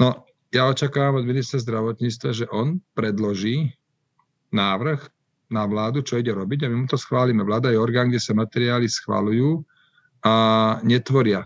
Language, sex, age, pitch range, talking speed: Slovak, male, 50-69, 105-130 Hz, 150 wpm